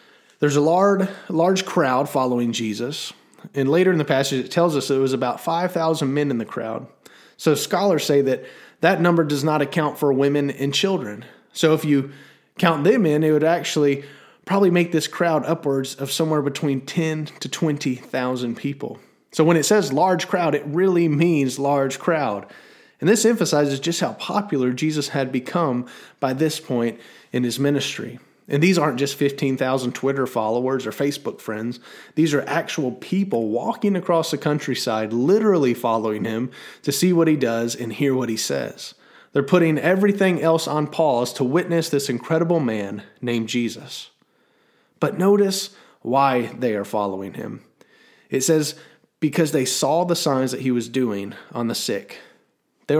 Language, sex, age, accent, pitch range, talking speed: English, male, 30-49, American, 130-165 Hz, 170 wpm